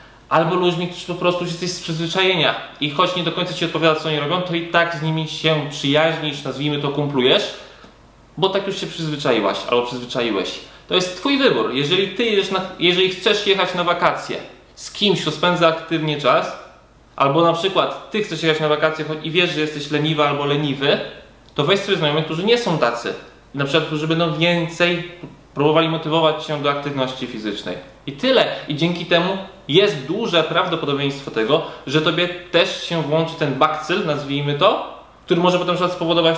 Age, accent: 20-39, native